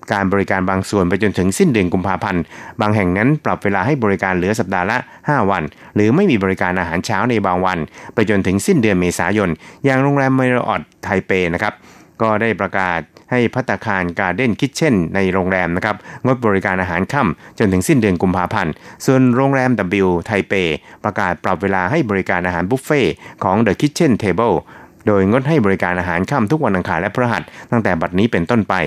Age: 60-79